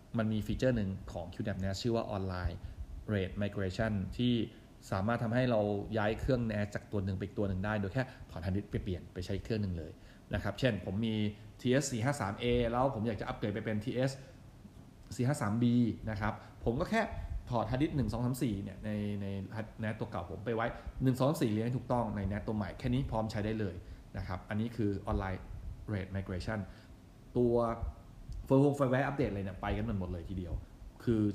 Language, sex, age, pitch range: Thai, male, 20-39, 95-120 Hz